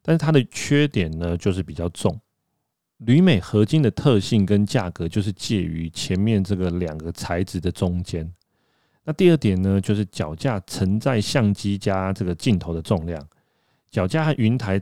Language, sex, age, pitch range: Chinese, male, 30-49, 90-110 Hz